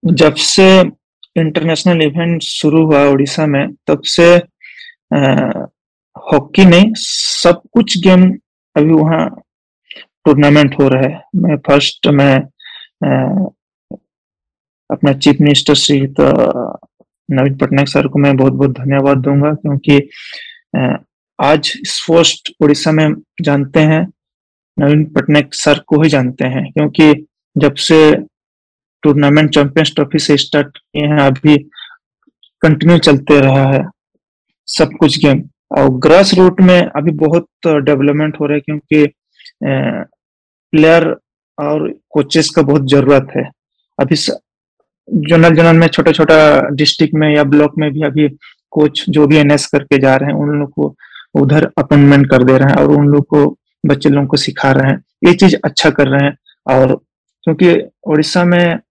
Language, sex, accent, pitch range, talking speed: English, male, Indian, 145-165 Hz, 110 wpm